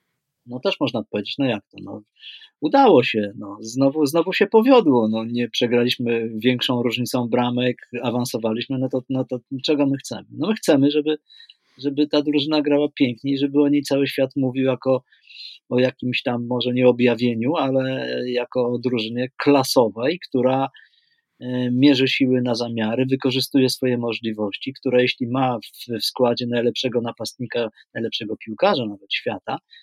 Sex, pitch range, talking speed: male, 120-145 Hz, 150 wpm